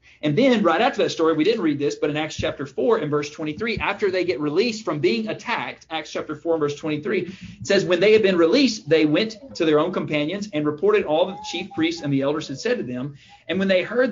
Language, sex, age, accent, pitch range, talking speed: English, male, 40-59, American, 135-180 Hz, 260 wpm